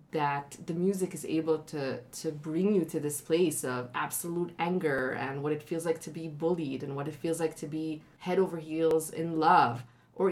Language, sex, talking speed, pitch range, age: English, female, 210 wpm, 150-175 Hz, 20-39